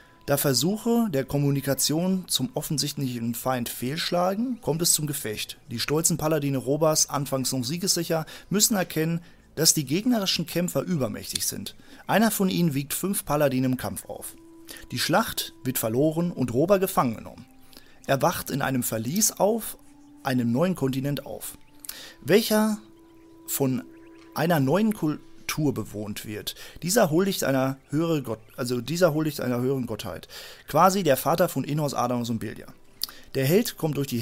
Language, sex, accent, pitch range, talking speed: German, male, German, 130-175 Hz, 145 wpm